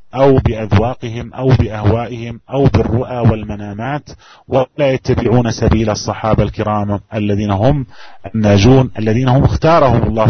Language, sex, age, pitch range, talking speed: Malay, male, 30-49, 110-125 Hz, 110 wpm